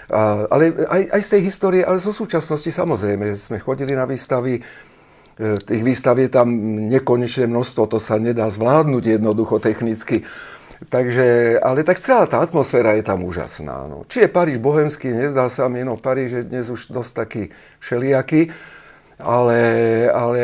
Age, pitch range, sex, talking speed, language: 50-69, 110-130 Hz, male, 160 wpm, Slovak